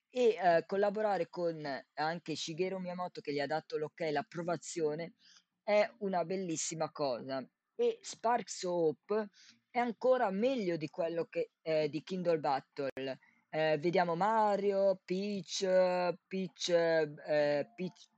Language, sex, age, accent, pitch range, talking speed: Italian, female, 20-39, native, 155-205 Hz, 125 wpm